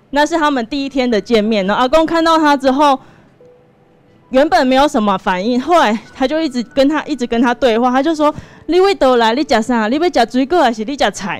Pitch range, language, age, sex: 215-285 Hz, Chinese, 20-39, female